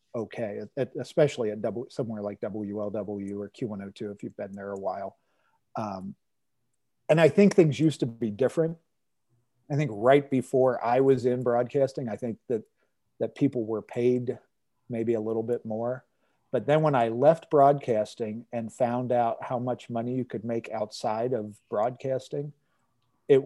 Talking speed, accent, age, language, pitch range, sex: 160 wpm, American, 40-59, English, 115-140 Hz, male